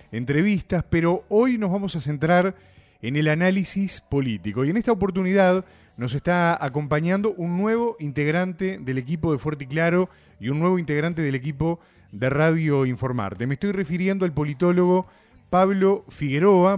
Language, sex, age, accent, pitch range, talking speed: English, male, 30-49, Argentinian, 135-190 Hz, 155 wpm